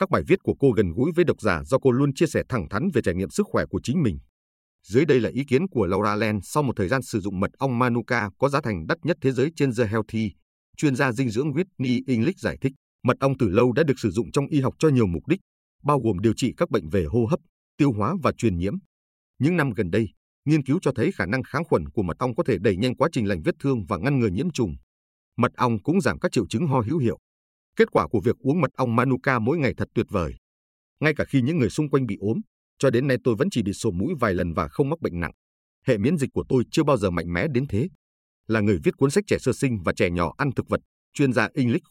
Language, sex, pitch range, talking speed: Vietnamese, male, 100-140 Hz, 280 wpm